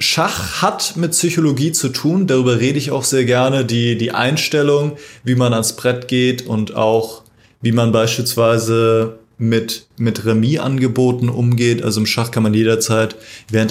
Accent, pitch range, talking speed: German, 115-130 Hz, 160 wpm